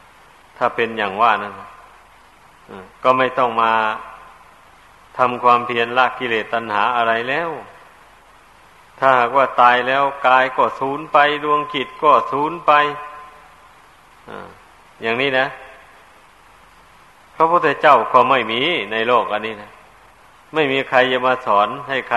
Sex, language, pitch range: male, Thai, 115-135 Hz